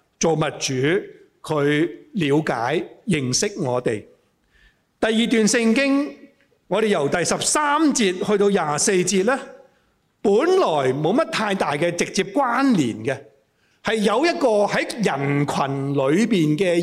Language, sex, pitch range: Chinese, male, 175-270 Hz